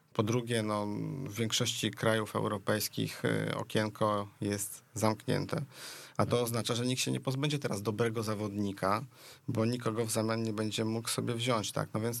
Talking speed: 160 wpm